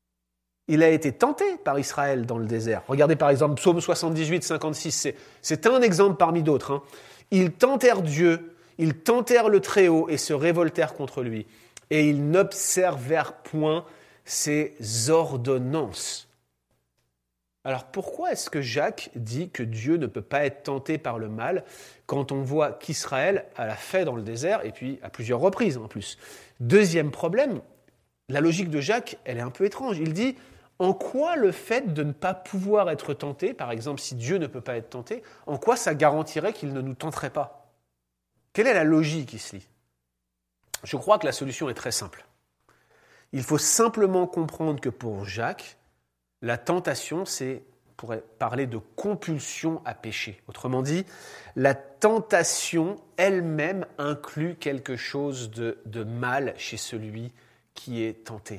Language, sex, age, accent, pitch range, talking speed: French, male, 30-49, French, 115-170 Hz, 165 wpm